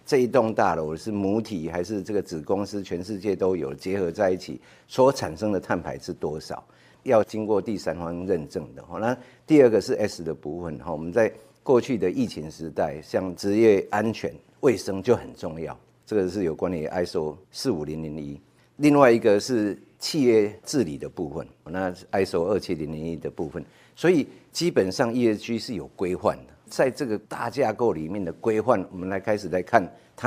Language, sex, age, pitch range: Chinese, male, 50-69, 80-110 Hz